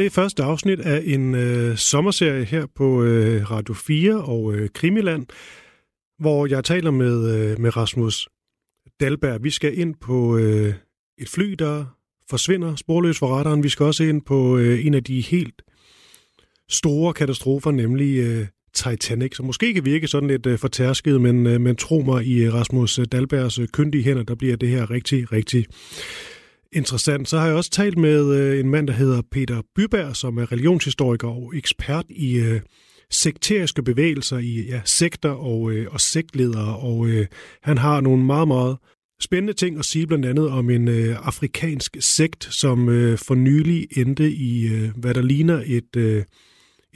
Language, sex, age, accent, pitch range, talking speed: Danish, male, 30-49, native, 120-150 Hz, 175 wpm